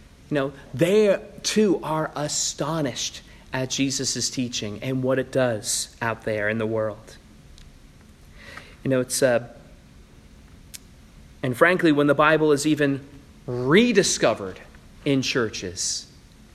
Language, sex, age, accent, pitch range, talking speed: English, male, 30-49, American, 110-160 Hz, 115 wpm